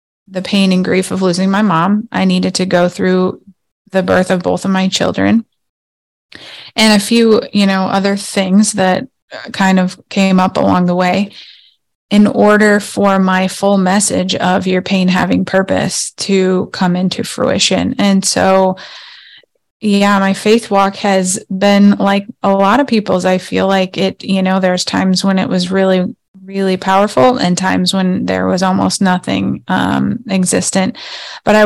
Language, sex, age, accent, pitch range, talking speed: English, female, 20-39, American, 185-200 Hz, 165 wpm